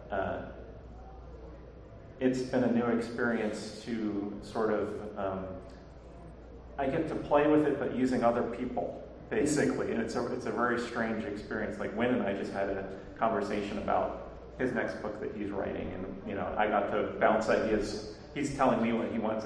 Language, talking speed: English, 175 wpm